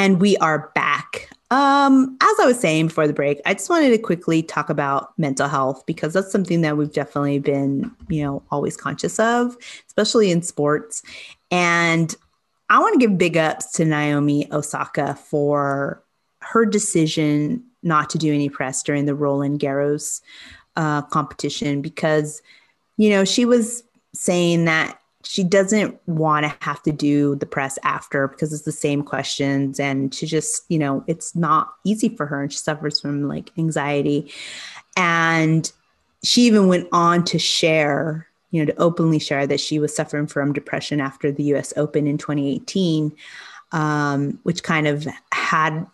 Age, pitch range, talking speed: 30-49, 145-175 Hz, 165 wpm